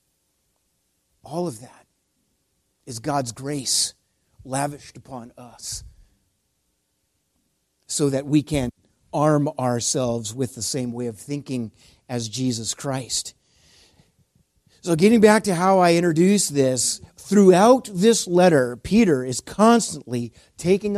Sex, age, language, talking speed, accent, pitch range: male, 50-69, English, 110 wpm, American, 125-200 Hz